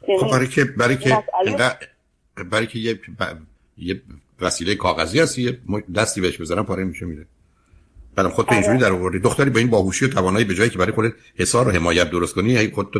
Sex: male